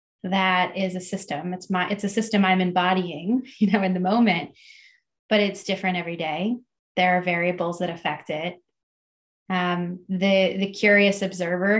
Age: 20-39